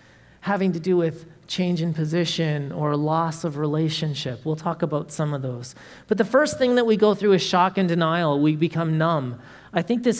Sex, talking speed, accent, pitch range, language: male, 205 wpm, American, 150-190 Hz, English